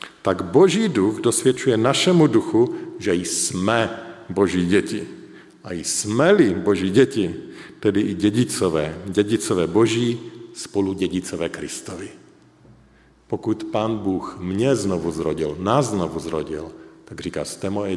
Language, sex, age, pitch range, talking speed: Slovak, male, 50-69, 95-130 Hz, 115 wpm